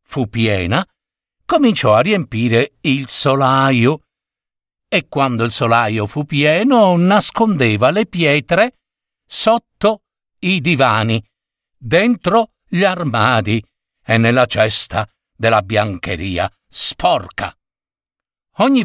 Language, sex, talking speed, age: Italian, male, 90 wpm, 60-79